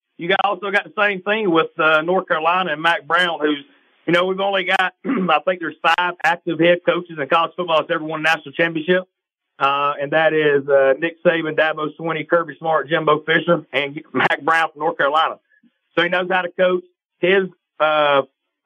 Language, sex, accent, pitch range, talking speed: English, male, American, 155-185 Hz, 205 wpm